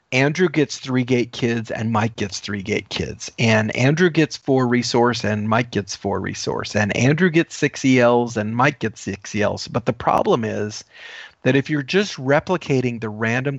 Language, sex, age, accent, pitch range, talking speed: English, male, 40-59, American, 110-145 Hz, 185 wpm